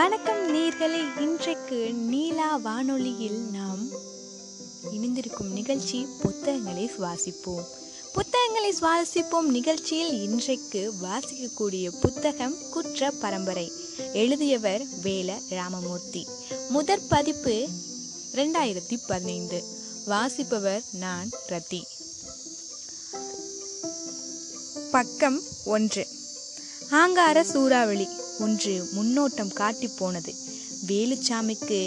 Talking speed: 70 wpm